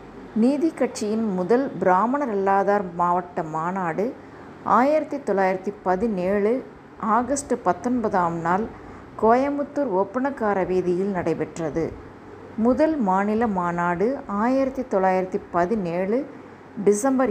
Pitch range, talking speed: 185-245 Hz, 85 wpm